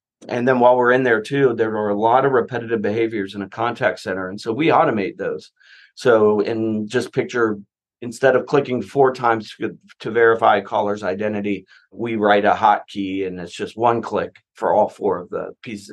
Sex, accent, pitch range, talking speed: male, American, 105-125 Hz, 200 wpm